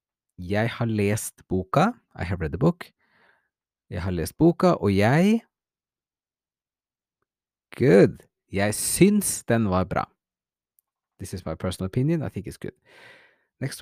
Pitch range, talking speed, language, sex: 100-155 Hz, 135 wpm, English, male